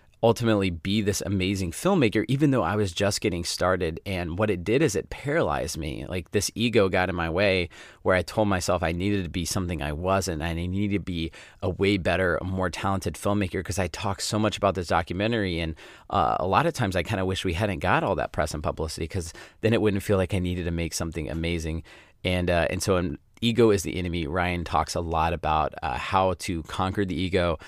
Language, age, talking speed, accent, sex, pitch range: English, 30-49, 230 wpm, American, male, 85-100 Hz